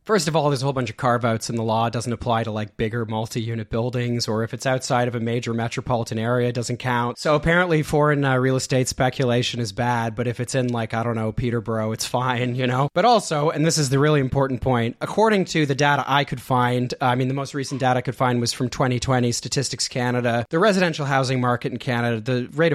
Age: 30-49